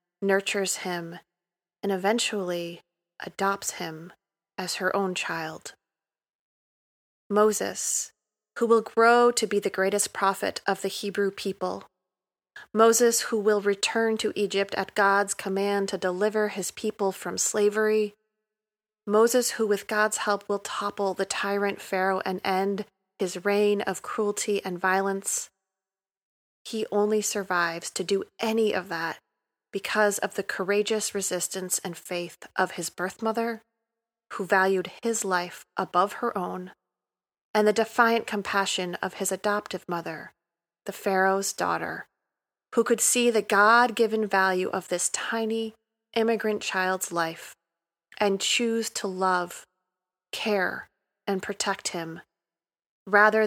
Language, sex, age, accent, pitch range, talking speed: English, female, 30-49, American, 185-215 Hz, 130 wpm